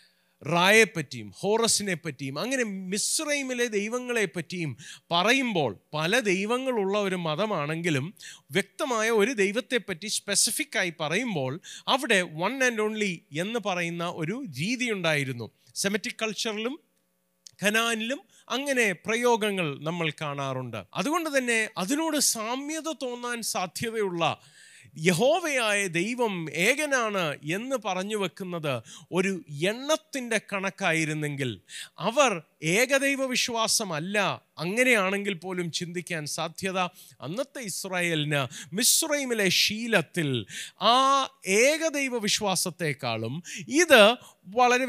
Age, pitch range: 30-49, 165-235 Hz